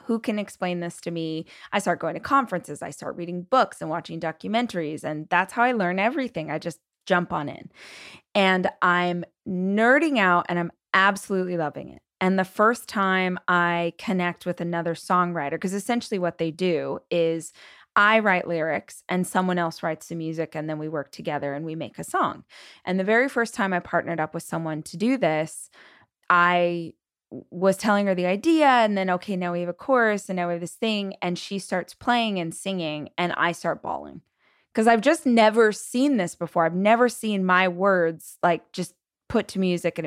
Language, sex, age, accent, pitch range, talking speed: English, female, 20-39, American, 170-200 Hz, 200 wpm